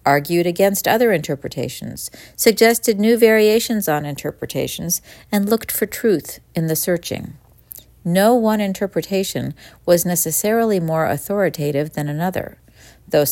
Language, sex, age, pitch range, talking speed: English, female, 50-69, 160-220 Hz, 115 wpm